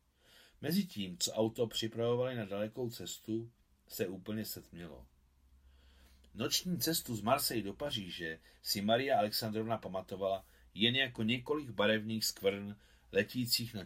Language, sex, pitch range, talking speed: Czech, male, 95-130 Hz, 115 wpm